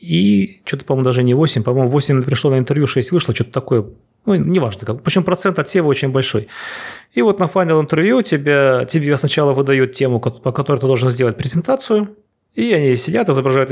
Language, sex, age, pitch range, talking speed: Russian, male, 30-49, 125-170 Hz, 185 wpm